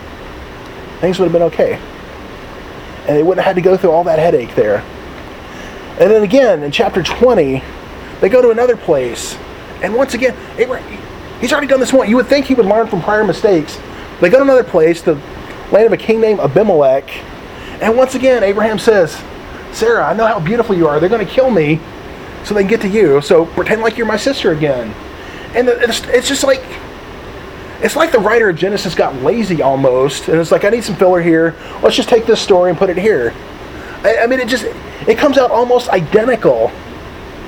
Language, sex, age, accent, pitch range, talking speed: English, male, 30-49, American, 175-250 Hz, 205 wpm